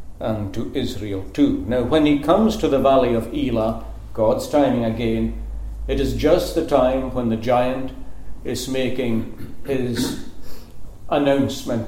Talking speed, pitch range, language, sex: 140 wpm, 105-140 Hz, English, male